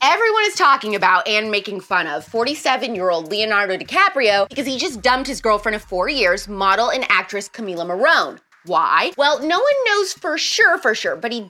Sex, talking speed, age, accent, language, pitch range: female, 200 wpm, 20-39, American, English, 190-270 Hz